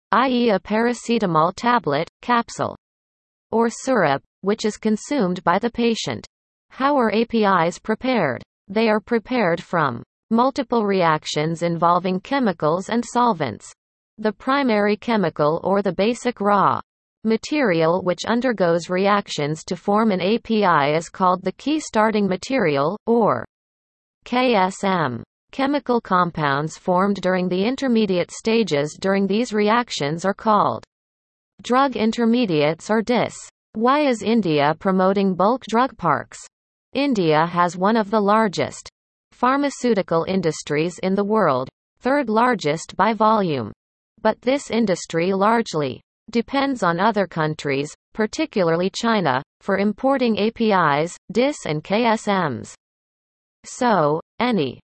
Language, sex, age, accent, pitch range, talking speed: English, female, 40-59, American, 170-235 Hz, 115 wpm